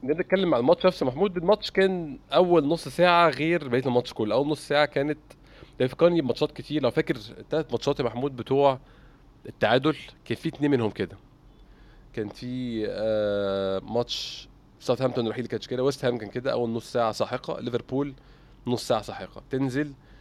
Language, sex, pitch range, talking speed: Arabic, male, 120-145 Hz, 170 wpm